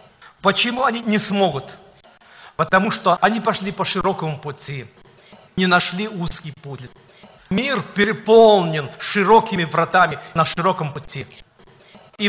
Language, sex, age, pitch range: Russian, male, 50-69, 165-205 Hz